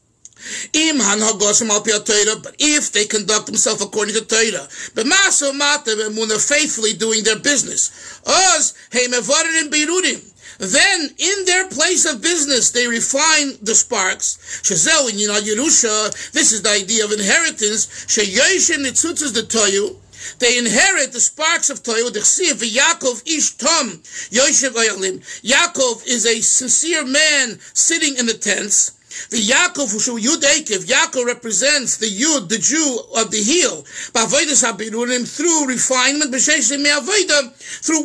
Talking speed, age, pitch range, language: 100 wpm, 50-69, 220-310 Hz, English